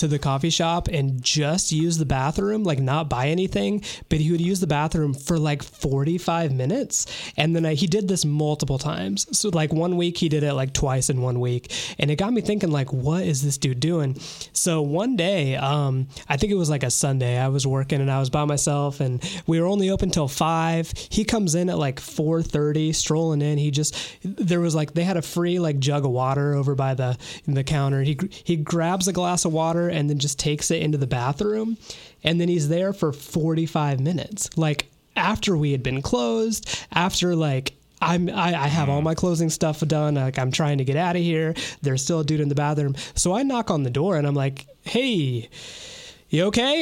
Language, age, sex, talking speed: English, 20-39, male, 220 wpm